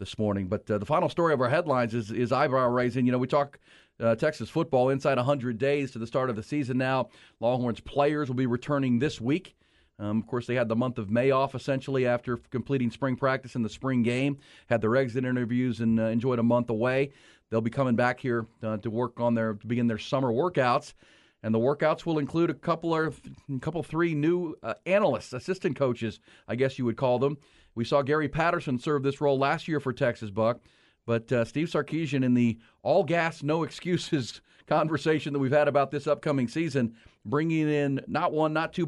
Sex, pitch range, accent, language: male, 120-150 Hz, American, English